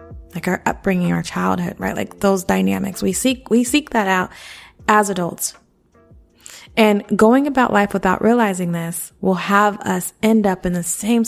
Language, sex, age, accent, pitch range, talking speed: English, female, 20-39, American, 180-225 Hz, 170 wpm